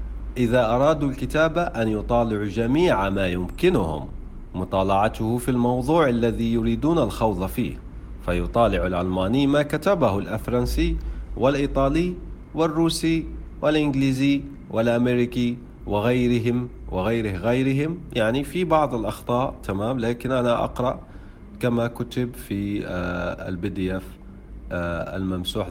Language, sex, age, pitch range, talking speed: Arabic, male, 40-59, 95-135 Hz, 95 wpm